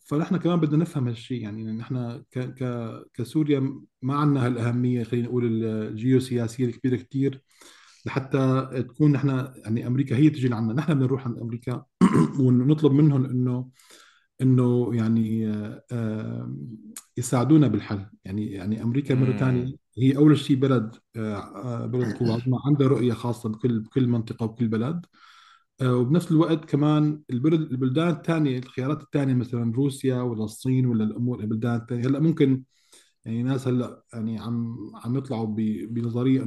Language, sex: Arabic, male